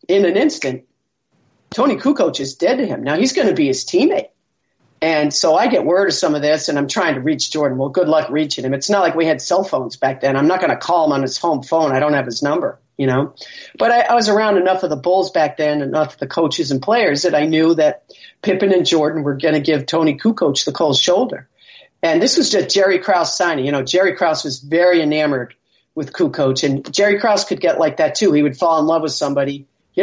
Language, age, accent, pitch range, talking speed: English, 50-69, American, 150-195 Hz, 255 wpm